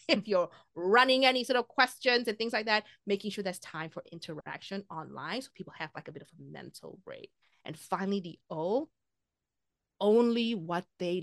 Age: 30-49